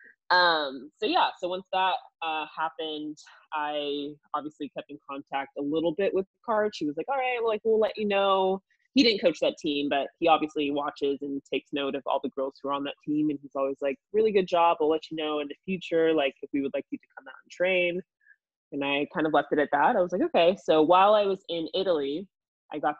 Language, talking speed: English, 250 wpm